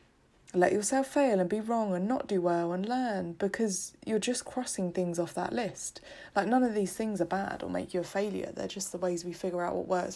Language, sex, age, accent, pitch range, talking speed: English, female, 20-39, British, 175-220 Hz, 240 wpm